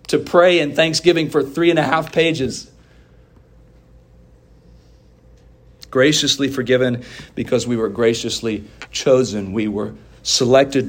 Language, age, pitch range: English, 40-59, 125-165 Hz